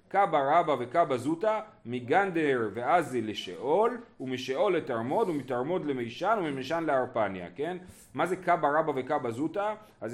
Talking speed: 125 wpm